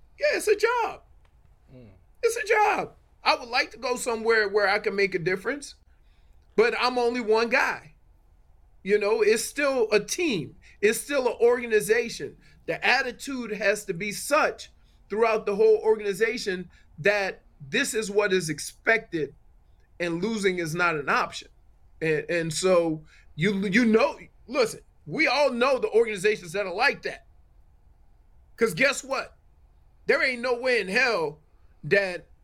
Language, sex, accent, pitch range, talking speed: English, male, American, 175-245 Hz, 150 wpm